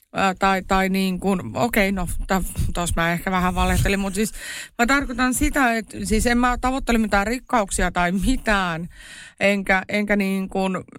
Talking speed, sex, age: 160 wpm, female, 30-49